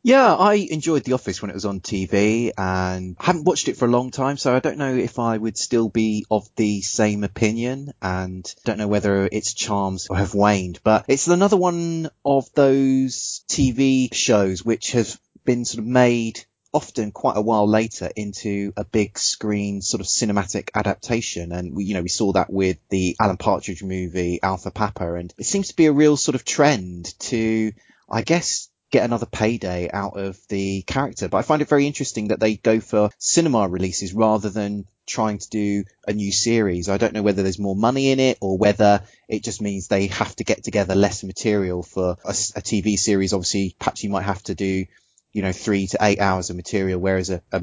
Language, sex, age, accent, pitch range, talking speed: English, male, 20-39, British, 95-115 Hz, 205 wpm